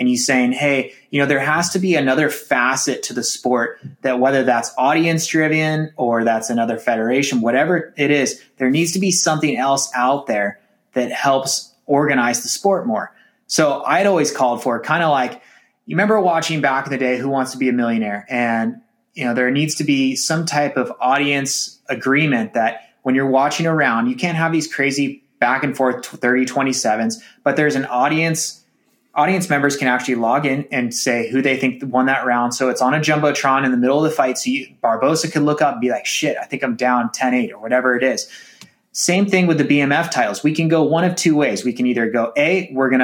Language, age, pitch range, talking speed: English, 20-39, 125-155 Hz, 220 wpm